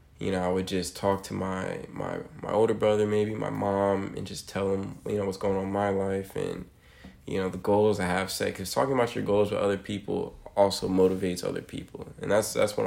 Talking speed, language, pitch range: 240 wpm, English, 95-105 Hz